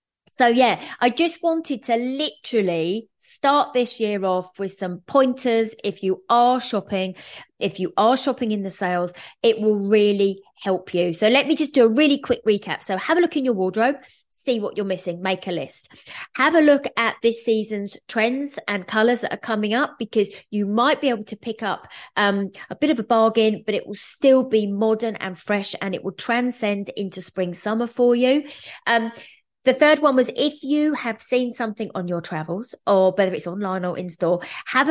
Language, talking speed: English, 200 wpm